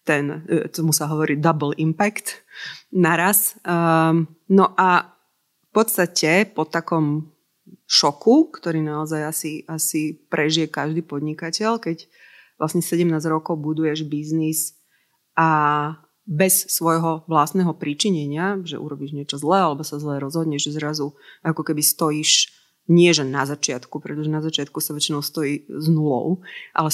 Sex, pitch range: female, 150-175 Hz